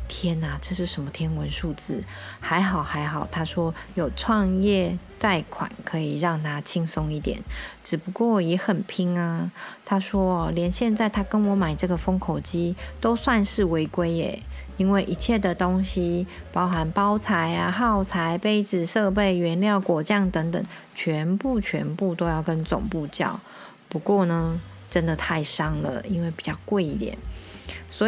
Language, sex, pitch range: Chinese, female, 165-205 Hz